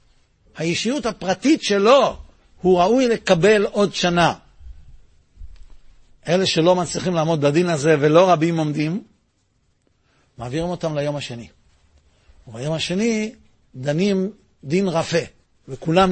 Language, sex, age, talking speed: Hebrew, male, 60-79, 100 wpm